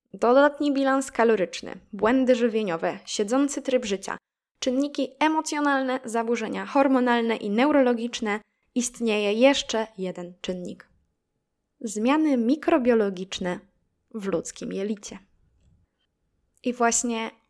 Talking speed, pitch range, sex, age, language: 85 wpm, 205-260 Hz, female, 10-29, Polish